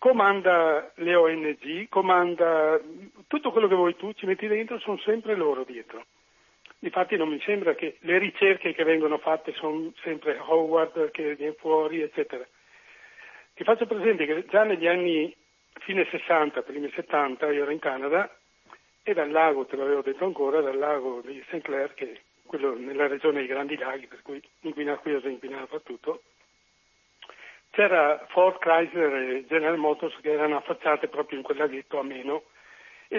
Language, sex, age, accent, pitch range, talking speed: Italian, male, 60-79, native, 150-215 Hz, 165 wpm